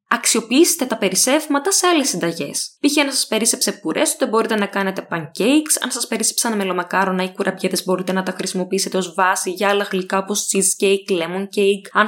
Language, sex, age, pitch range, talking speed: Greek, female, 20-39, 190-240 Hz, 185 wpm